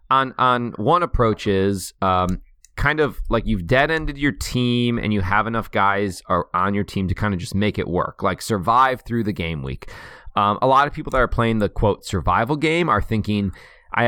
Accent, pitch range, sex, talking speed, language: American, 95-120 Hz, male, 215 wpm, English